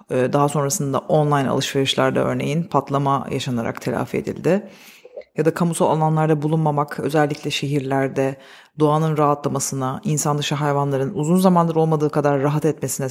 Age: 40-59